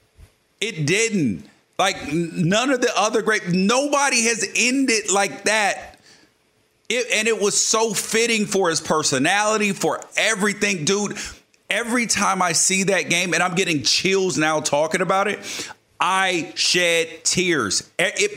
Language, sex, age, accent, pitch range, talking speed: English, male, 40-59, American, 150-210 Hz, 135 wpm